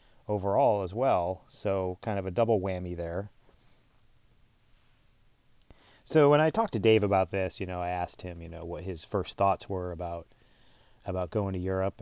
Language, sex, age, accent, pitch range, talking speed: English, male, 30-49, American, 90-115 Hz, 175 wpm